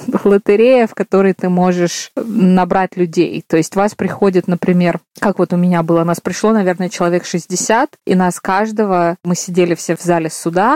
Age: 20-39